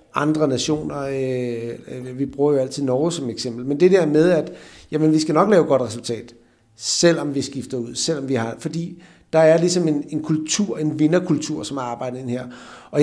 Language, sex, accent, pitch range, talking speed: Danish, male, native, 145-180 Hz, 205 wpm